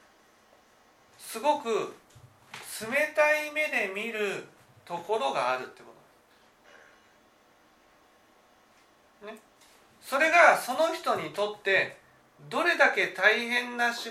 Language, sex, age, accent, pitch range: Japanese, male, 40-59, native, 190-300 Hz